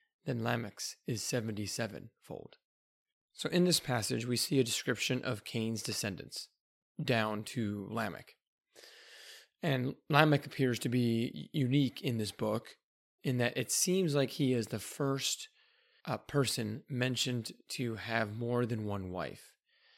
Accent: American